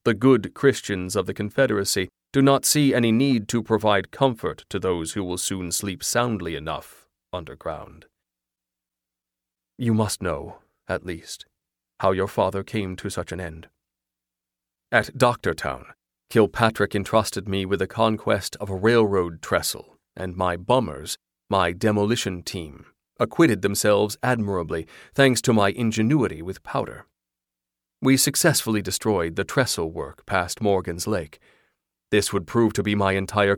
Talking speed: 140 wpm